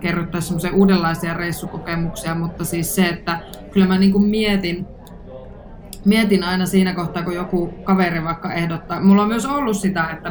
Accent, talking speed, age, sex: native, 150 wpm, 20-39, female